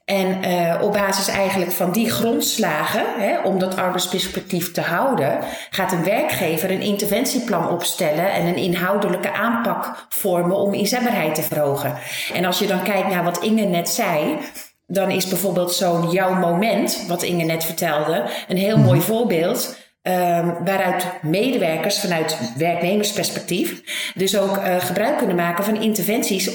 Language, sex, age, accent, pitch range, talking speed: Dutch, female, 40-59, Dutch, 180-220 Hz, 150 wpm